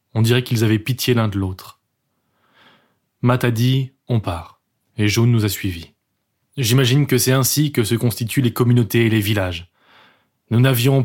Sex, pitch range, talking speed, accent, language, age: male, 105-125 Hz, 185 wpm, French, French, 20-39